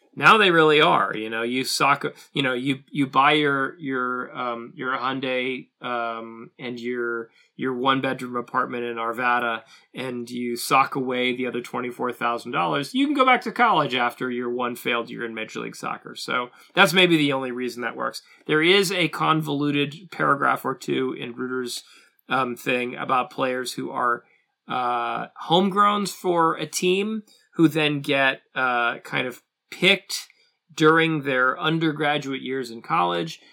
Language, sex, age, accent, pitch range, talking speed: English, male, 30-49, American, 120-145 Hz, 165 wpm